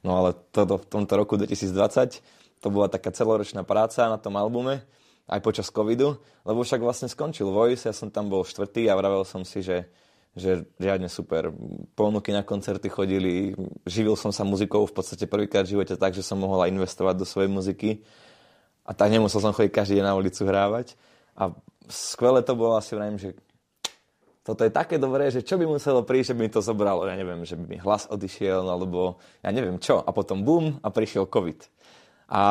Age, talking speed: 20-39, 200 wpm